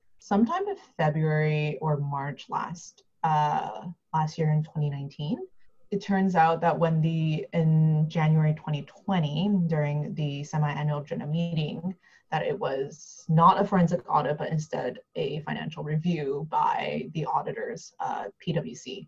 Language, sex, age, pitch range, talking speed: English, female, 20-39, 150-195 Hz, 130 wpm